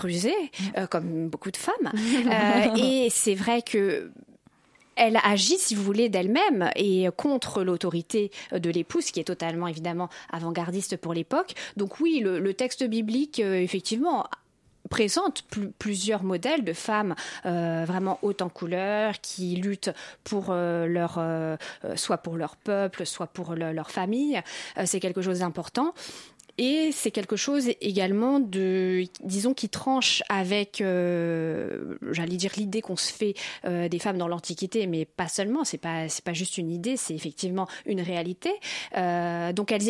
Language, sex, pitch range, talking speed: French, female, 175-220 Hz, 160 wpm